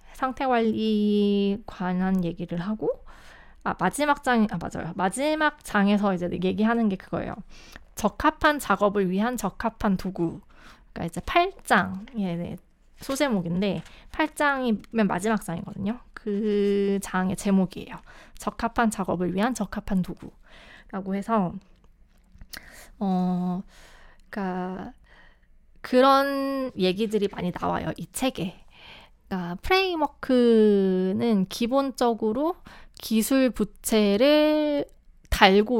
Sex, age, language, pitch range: female, 20-39, Korean, 190-245 Hz